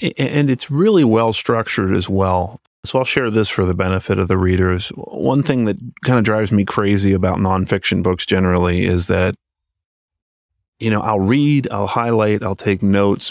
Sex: male